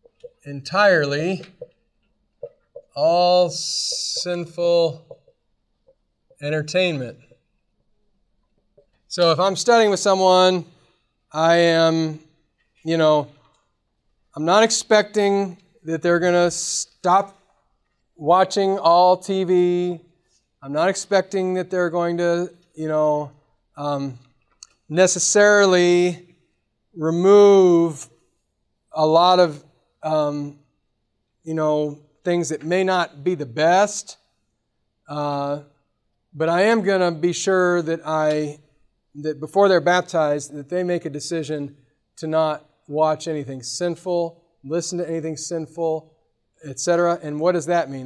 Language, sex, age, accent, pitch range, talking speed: English, male, 30-49, American, 150-180 Hz, 105 wpm